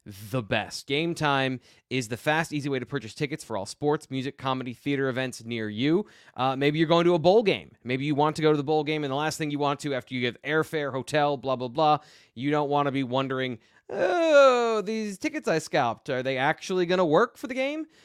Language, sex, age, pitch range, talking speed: English, male, 20-39, 125-155 Hz, 245 wpm